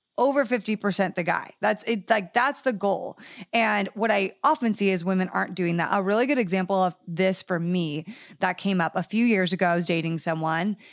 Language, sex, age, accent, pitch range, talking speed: English, female, 30-49, American, 185-225 Hz, 215 wpm